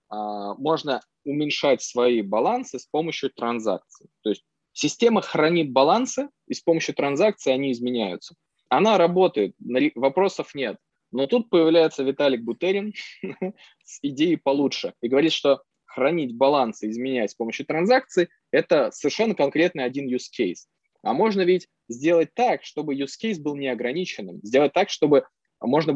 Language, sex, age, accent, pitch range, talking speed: Russian, male, 20-39, native, 125-175 Hz, 135 wpm